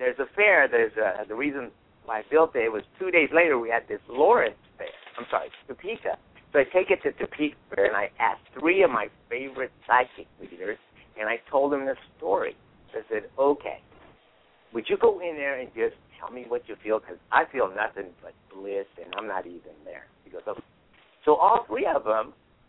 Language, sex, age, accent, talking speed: English, male, 60-79, American, 210 wpm